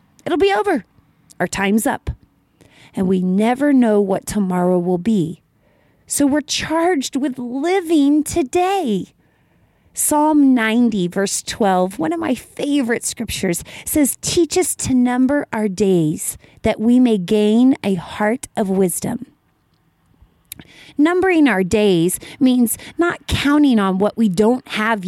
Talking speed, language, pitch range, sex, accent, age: 130 wpm, English, 195-260 Hz, female, American, 30-49